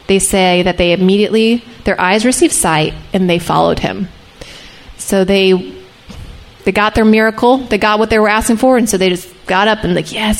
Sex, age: female, 20-39